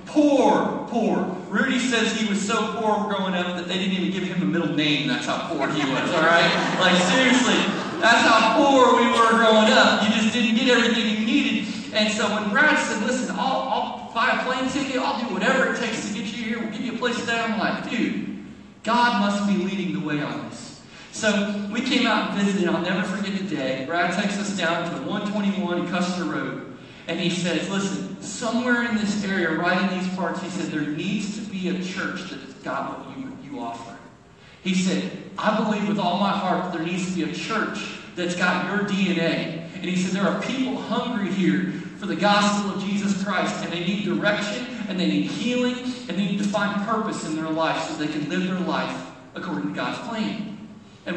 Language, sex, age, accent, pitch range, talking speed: English, male, 40-59, American, 180-225 Hz, 220 wpm